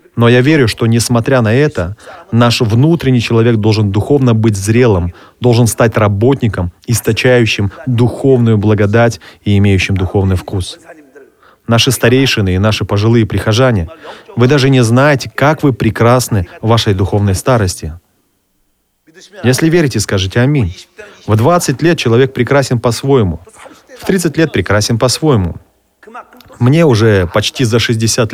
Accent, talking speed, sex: native, 130 wpm, male